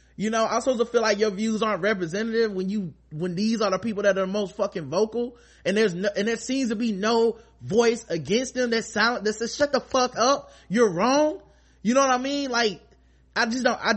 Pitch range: 195-255 Hz